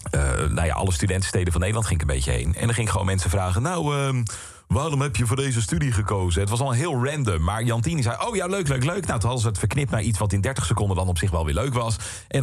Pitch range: 90-120 Hz